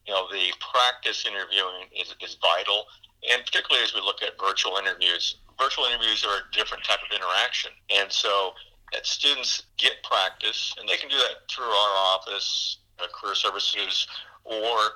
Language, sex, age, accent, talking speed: English, male, 50-69, American, 170 wpm